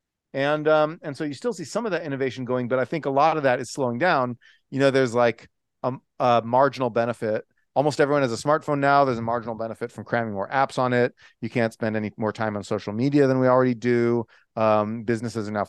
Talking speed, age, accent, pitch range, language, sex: 240 wpm, 30-49, American, 110-140 Hz, English, male